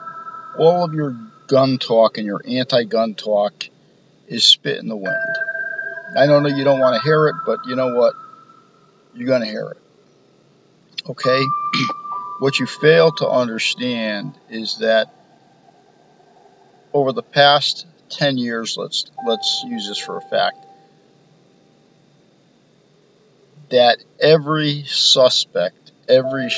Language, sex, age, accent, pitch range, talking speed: English, male, 50-69, American, 125-195 Hz, 125 wpm